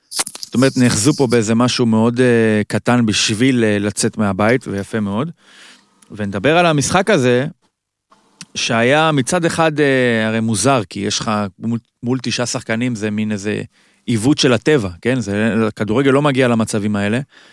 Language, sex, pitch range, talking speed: Hebrew, male, 115-175 Hz, 155 wpm